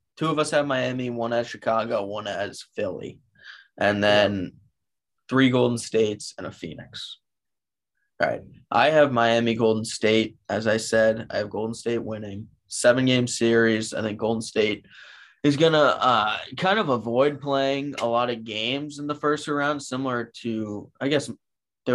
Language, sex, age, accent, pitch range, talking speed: English, male, 20-39, American, 110-125 Hz, 160 wpm